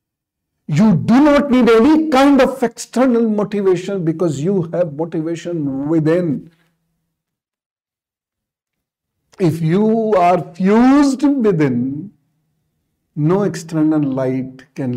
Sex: male